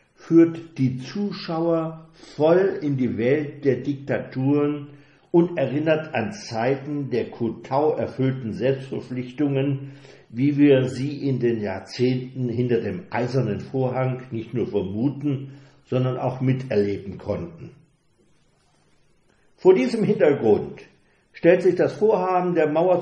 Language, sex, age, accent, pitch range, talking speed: German, male, 60-79, German, 125-155 Hz, 110 wpm